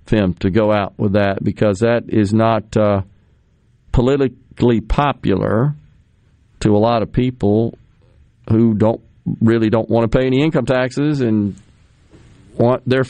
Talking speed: 140 wpm